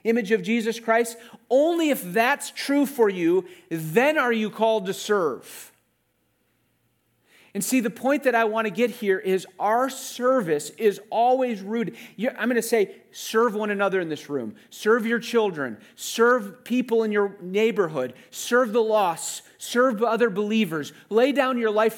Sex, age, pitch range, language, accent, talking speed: male, 40-59, 185-235 Hz, English, American, 165 wpm